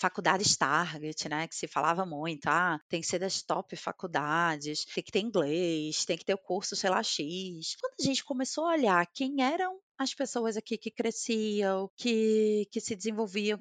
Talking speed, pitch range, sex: 190 wpm, 200-265 Hz, female